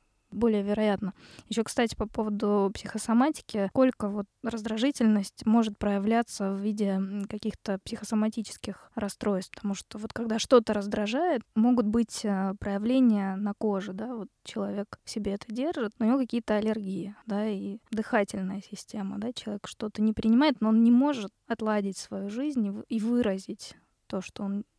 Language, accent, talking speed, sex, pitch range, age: Russian, native, 145 wpm, female, 200-230 Hz, 20-39